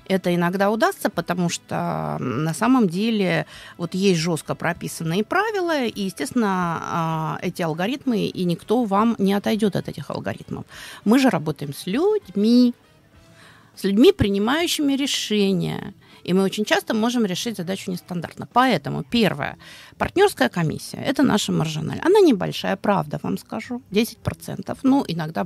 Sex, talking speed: female, 135 wpm